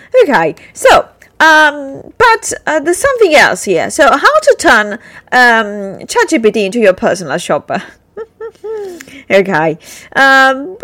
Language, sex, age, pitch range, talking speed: English, female, 30-49, 180-275 Hz, 115 wpm